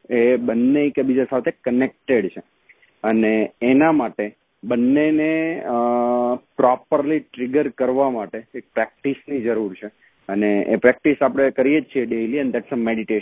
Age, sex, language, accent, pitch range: 30-49, male, Gujarati, native, 120-140 Hz